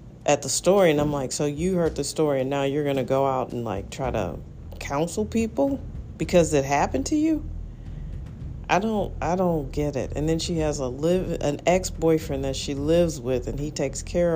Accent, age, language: American, 40-59, English